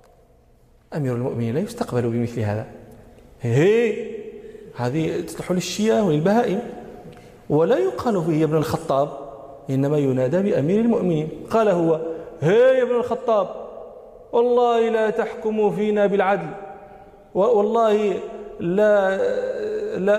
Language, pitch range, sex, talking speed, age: Arabic, 130-190 Hz, male, 105 wpm, 40-59